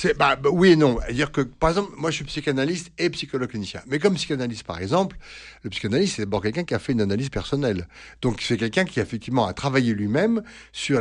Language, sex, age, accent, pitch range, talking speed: French, male, 60-79, French, 105-140 Hz, 235 wpm